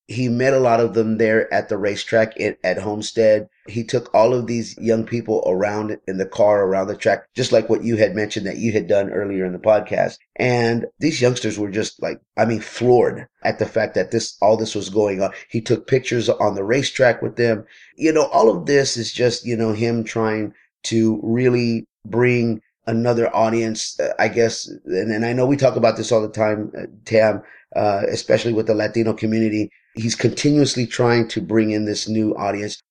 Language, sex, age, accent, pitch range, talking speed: English, male, 30-49, American, 105-120 Hz, 205 wpm